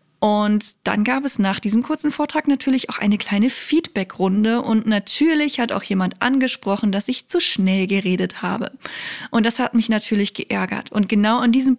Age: 10-29